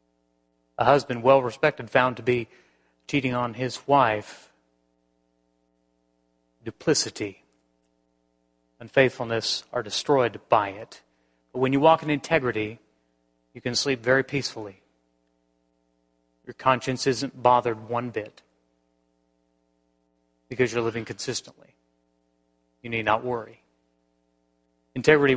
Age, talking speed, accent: 30-49, 100 wpm, American